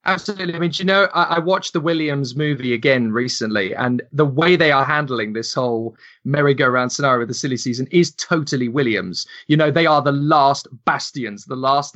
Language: English